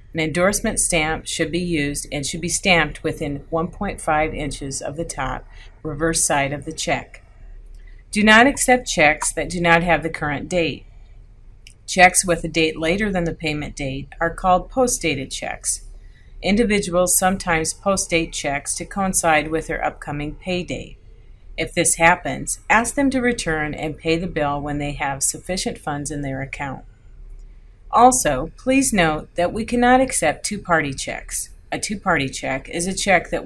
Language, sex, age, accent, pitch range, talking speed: English, female, 50-69, American, 140-175 Hz, 165 wpm